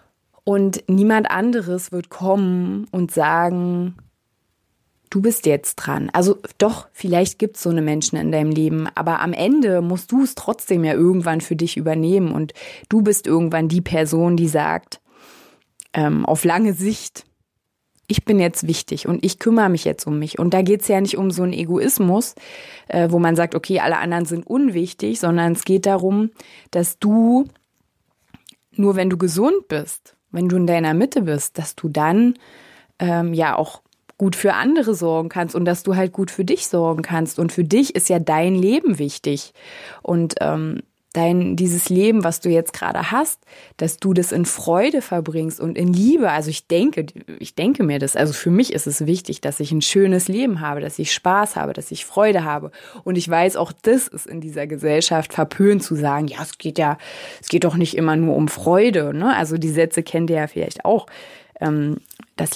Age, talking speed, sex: 20-39, 190 wpm, female